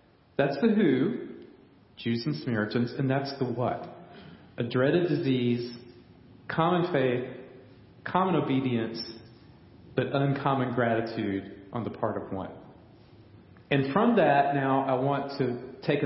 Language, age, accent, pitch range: English, 40-59, American, 120-155 Hz